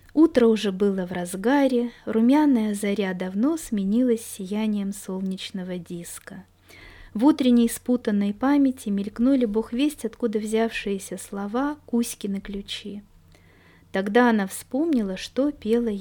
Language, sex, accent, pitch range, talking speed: Russian, female, native, 185-240 Hz, 110 wpm